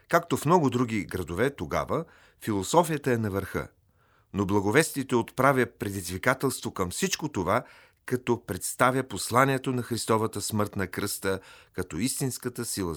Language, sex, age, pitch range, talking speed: Bulgarian, male, 40-59, 100-135 Hz, 130 wpm